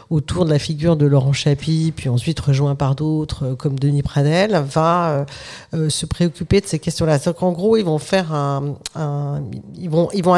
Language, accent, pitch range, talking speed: French, French, 140-170 Hz, 195 wpm